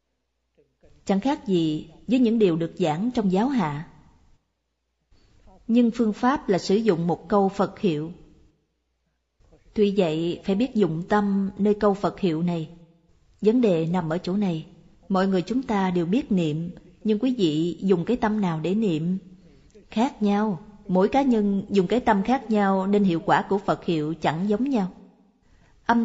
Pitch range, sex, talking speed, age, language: 170-220 Hz, female, 170 wpm, 20-39, Vietnamese